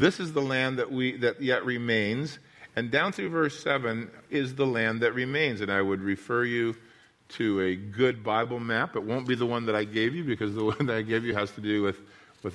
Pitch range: 110-135 Hz